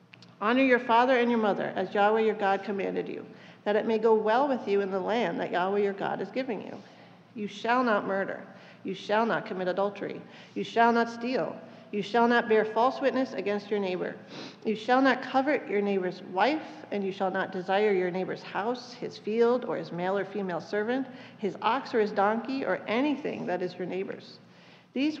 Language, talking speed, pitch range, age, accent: English, 205 wpm, 195-235 Hz, 40-59, American